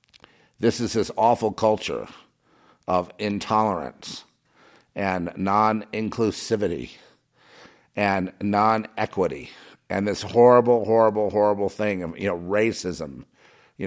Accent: American